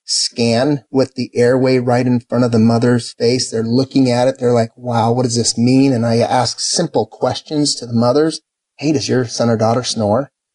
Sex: male